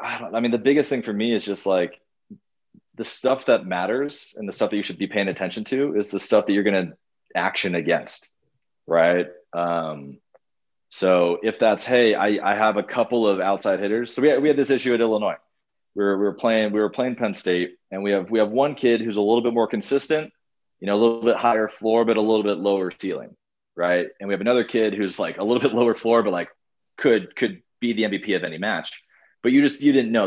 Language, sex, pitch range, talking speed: English, male, 95-115 Hz, 240 wpm